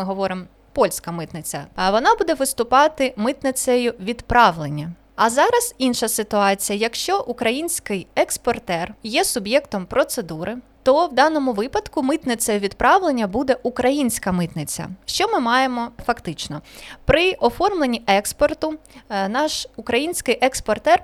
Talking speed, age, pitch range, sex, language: 110 wpm, 20-39, 205-275 Hz, female, Ukrainian